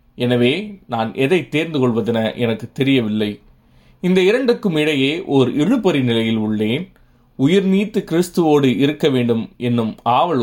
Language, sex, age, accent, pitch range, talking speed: Tamil, male, 20-39, native, 115-150 Hz, 115 wpm